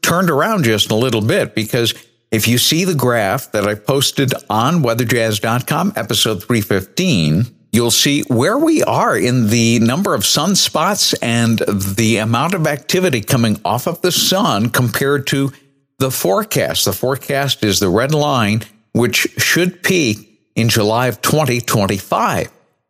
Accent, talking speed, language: American, 145 wpm, English